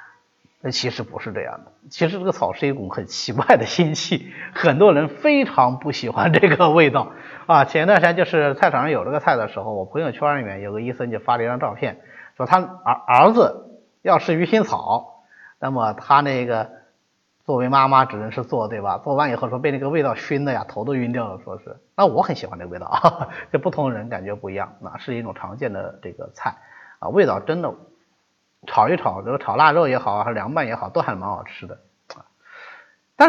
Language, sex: Chinese, male